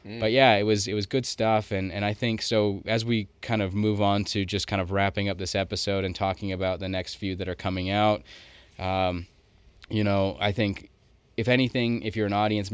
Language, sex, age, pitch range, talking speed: English, male, 20-39, 95-105 Hz, 225 wpm